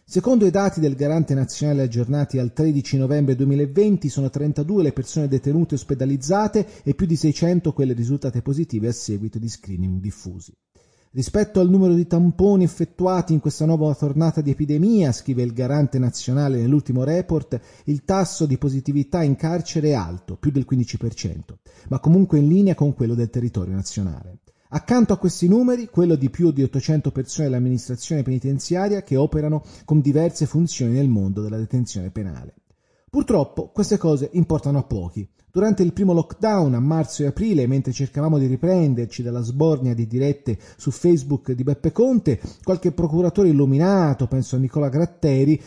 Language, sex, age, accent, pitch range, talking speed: Italian, male, 30-49, native, 130-165 Hz, 165 wpm